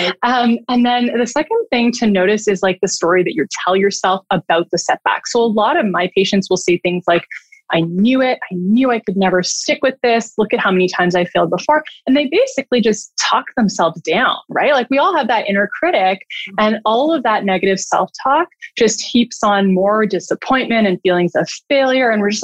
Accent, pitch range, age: American, 190-250 Hz, 20-39